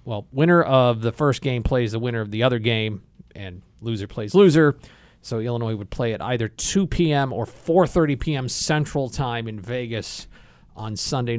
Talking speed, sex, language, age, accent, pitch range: 180 wpm, male, English, 40-59, American, 110-145 Hz